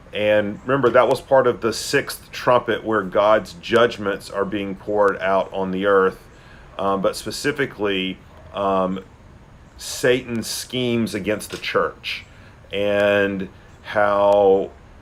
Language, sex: English, male